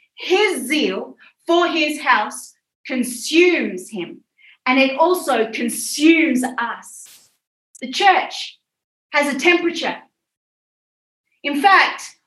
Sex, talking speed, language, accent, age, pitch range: female, 95 wpm, Swedish, Australian, 30-49, 265-350 Hz